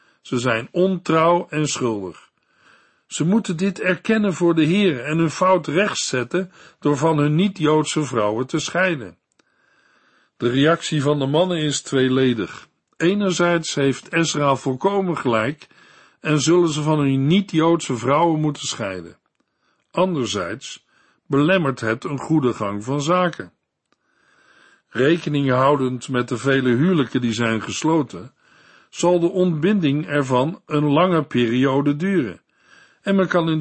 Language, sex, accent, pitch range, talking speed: Dutch, male, Dutch, 130-170 Hz, 130 wpm